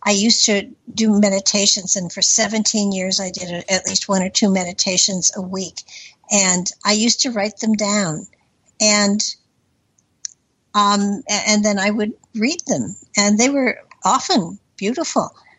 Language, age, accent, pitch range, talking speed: English, 60-79, American, 195-225 Hz, 150 wpm